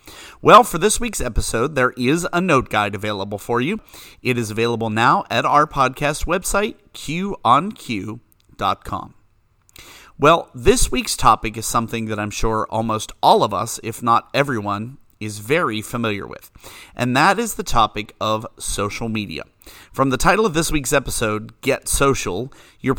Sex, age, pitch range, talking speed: male, 30-49, 105-135 Hz, 155 wpm